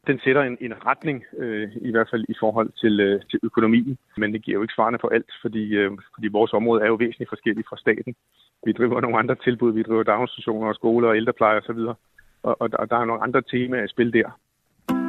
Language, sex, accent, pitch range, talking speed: Danish, female, native, 145-185 Hz, 235 wpm